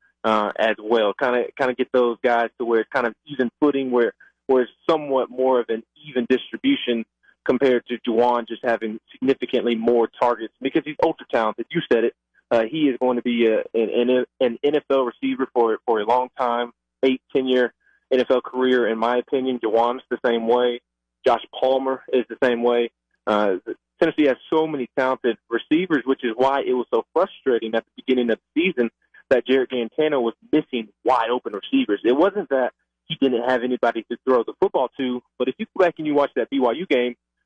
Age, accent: 20-39, American